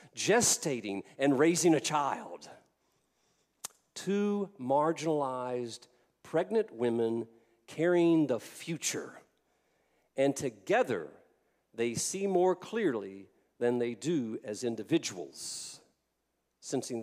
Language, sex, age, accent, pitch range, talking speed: English, male, 50-69, American, 125-195 Hz, 85 wpm